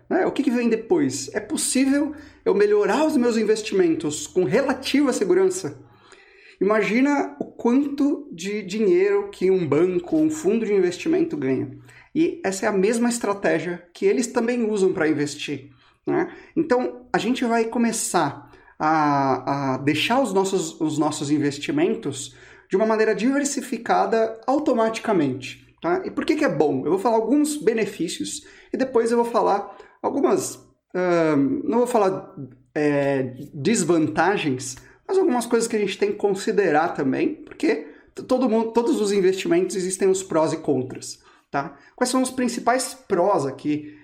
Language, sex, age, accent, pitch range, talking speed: Portuguese, male, 30-49, Brazilian, 175-290 Hz, 145 wpm